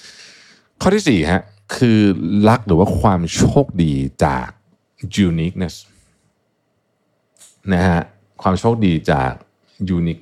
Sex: male